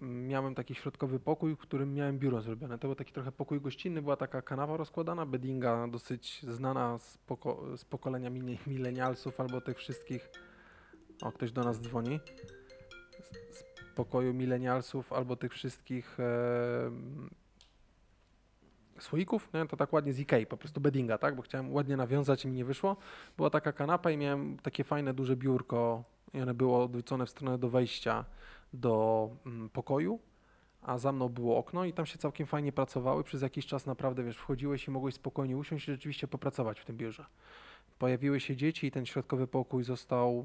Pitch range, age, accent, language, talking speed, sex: 125-145 Hz, 20-39, native, Polish, 175 wpm, male